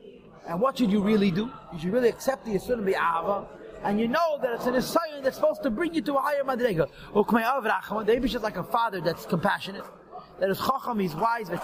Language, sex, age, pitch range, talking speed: English, male, 30-49, 210-270 Hz, 210 wpm